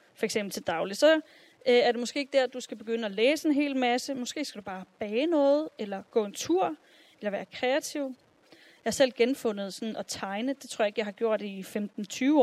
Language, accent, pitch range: Danish, native, 220-280 Hz